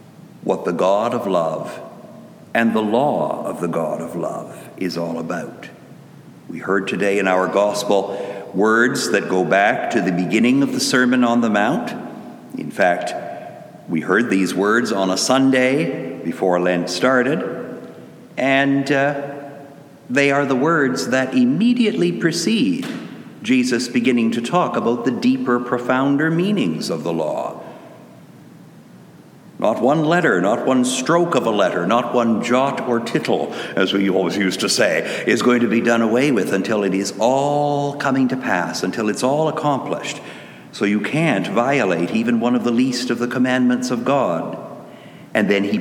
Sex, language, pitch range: male, English, 100-140 Hz